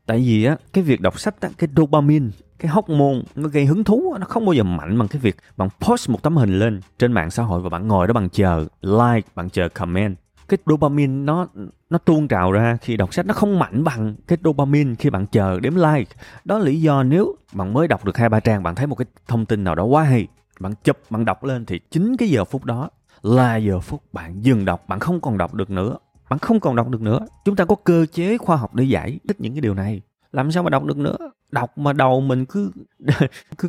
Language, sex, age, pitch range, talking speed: Vietnamese, male, 20-39, 100-155 Hz, 255 wpm